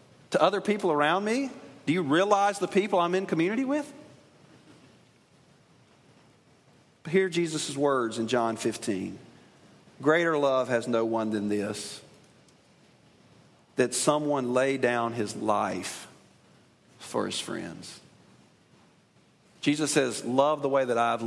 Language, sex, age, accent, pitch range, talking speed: English, male, 40-59, American, 115-155 Hz, 120 wpm